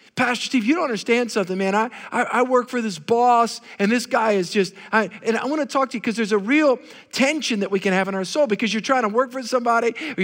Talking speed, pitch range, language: 275 wpm, 205-260 Hz, English